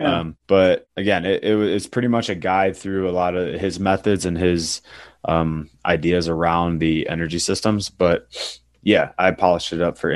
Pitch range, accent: 85-100 Hz, American